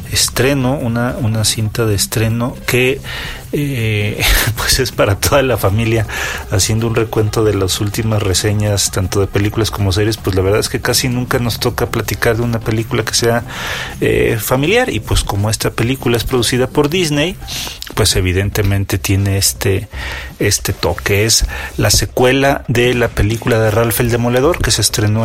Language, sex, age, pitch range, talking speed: Spanish, male, 40-59, 100-120 Hz, 170 wpm